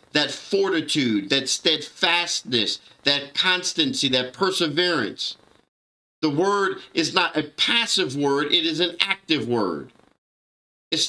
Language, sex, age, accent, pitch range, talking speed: English, male, 50-69, American, 150-195 Hz, 115 wpm